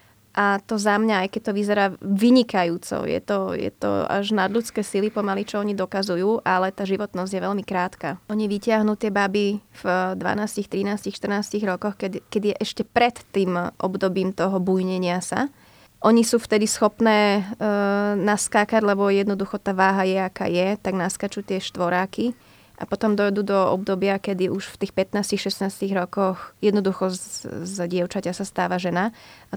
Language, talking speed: Slovak, 160 wpm